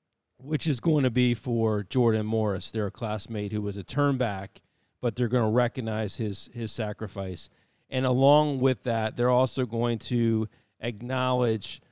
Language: English